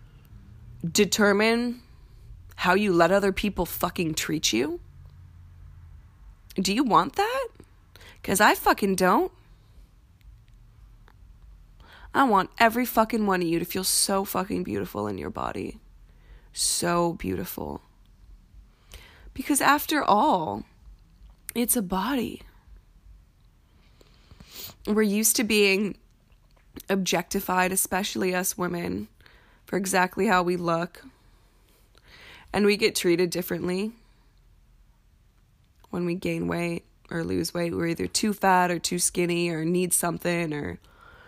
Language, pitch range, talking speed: English, 135-195 Hz, 110 wpm